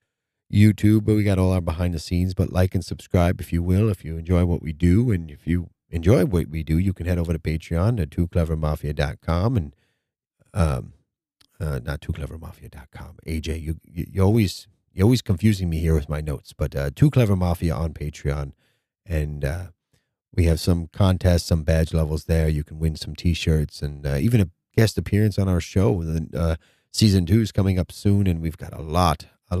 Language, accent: English, American